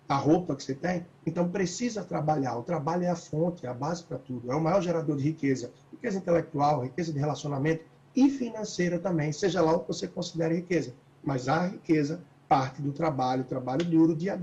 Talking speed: 200 wpm